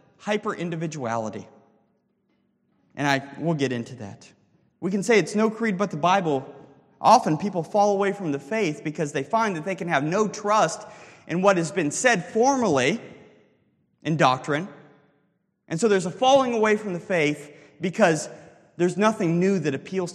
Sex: male